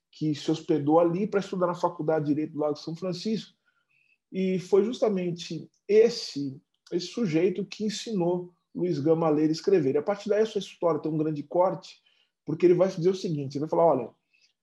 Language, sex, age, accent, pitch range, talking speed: Portuguese, male, 20-39, Brazilian, 155-190 Hz, 205 wpm